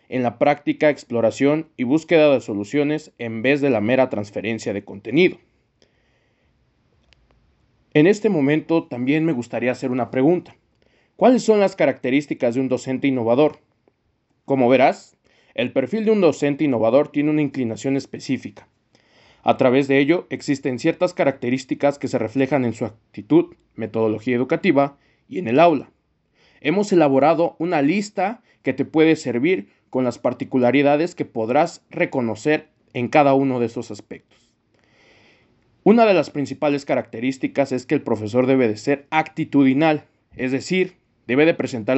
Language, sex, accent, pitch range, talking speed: Spanish, male, Mexican, 120-155 Hz, 145 wpm